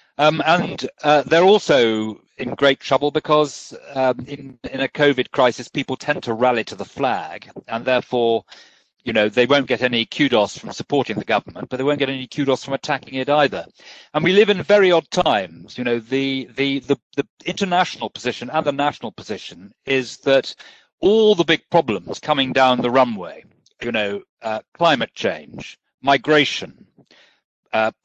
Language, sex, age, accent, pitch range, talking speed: English, male, 40-59, British, 125-150 Hz, 175 wpm